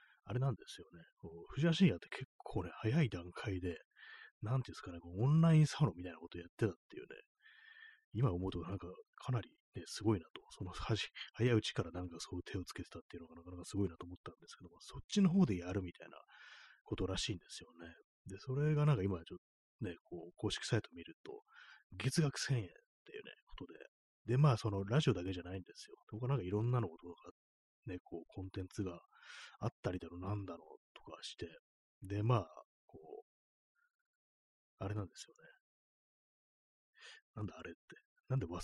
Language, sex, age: Japanese, male, 30-49